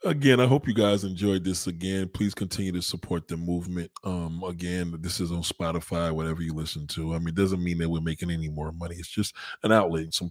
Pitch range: 85-120 Hz